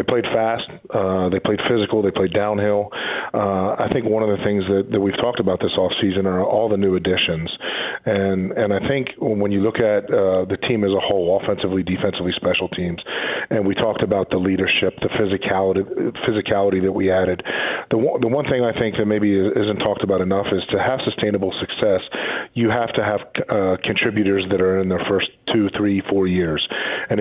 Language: English